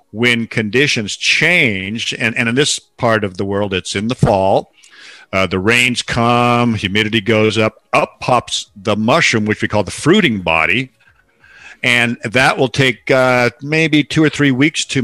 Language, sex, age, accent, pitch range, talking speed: English, male, 50-69, American, 110-130 Hz, 170 wpm